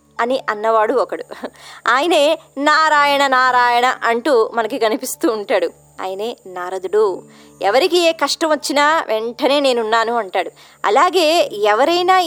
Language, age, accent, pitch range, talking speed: Telugu, 20-39, native, 215-330 Hz, 105 wpm